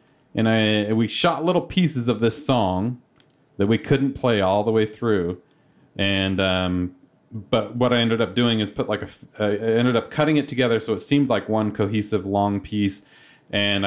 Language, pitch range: English, 105-150 Hz